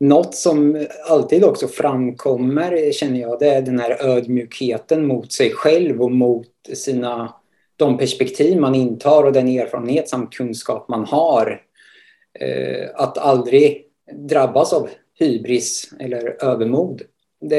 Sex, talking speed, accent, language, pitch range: male, 125 wpm, Norwegian, Swedish, 125-150 Hz